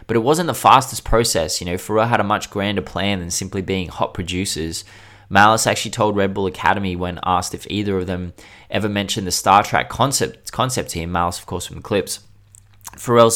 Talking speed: 200 wpm